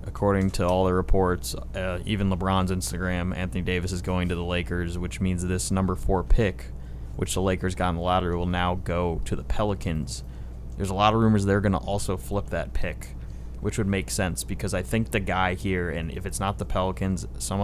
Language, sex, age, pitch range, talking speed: English, male, 20-39, 90-100 Hz, 220 wpm